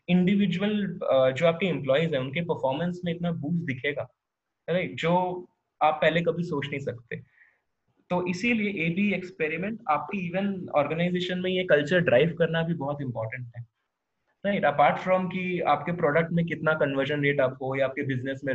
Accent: native